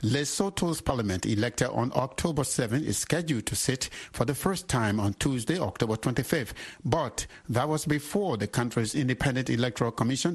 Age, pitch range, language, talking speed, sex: 60-79, 115-150 Hz, English, 155 wpm, male